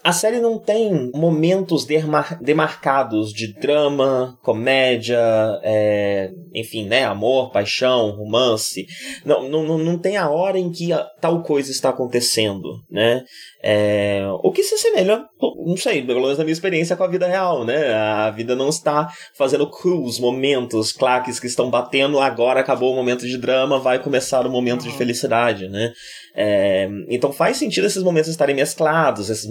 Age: 20-39